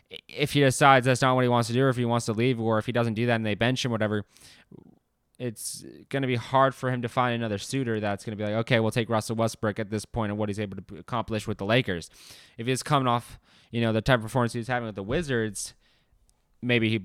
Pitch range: 105-120 Hz